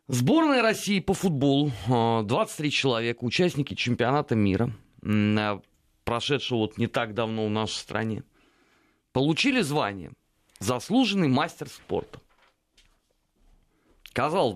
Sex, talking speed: male, 95 wpm